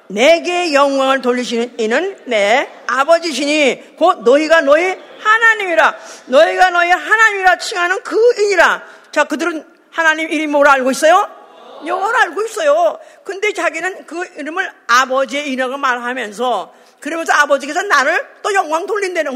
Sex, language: female, Korean